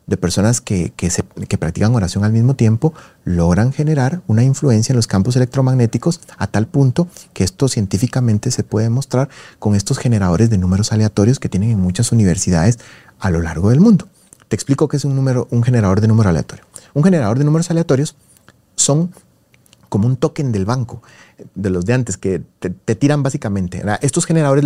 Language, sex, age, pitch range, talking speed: Spanish, male, 30-49, 105-140 Hz, 185 wpm